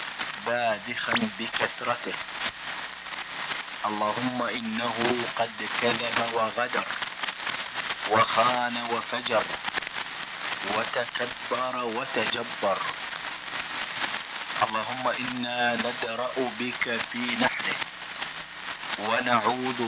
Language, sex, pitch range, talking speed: Italian, male, 115-120 Hz, 55 wpm